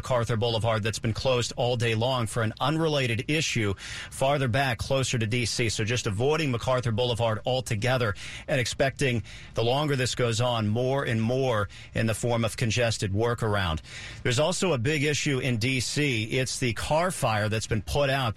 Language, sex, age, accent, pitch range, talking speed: English, male, 50-69, American, 110-135 Hz, 175 wpm